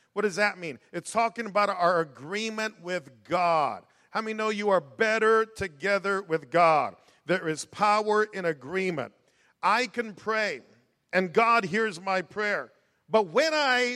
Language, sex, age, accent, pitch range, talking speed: English, male, 50-69, American, 165-220 Hz, 155 wpm